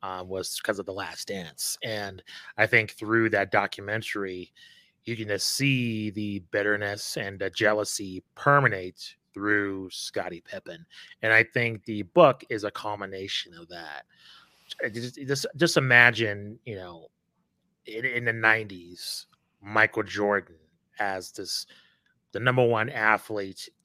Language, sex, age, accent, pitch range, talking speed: English, male, 30-49, American, 100-125 Hz, 135 wpm